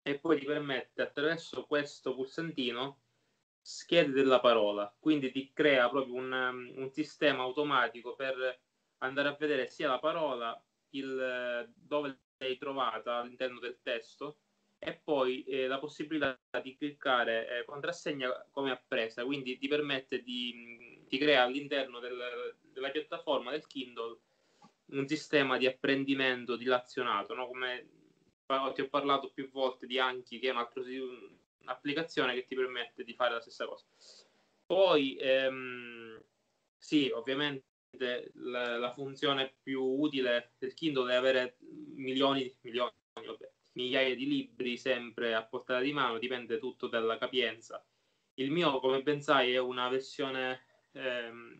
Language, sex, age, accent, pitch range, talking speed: Italian, male, 20-39, native, 125-145 Hz, 135 wpm